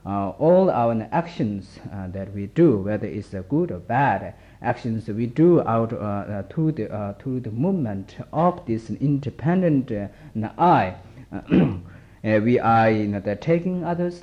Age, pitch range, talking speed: 50-69, 105-150 Hz, 205 wpm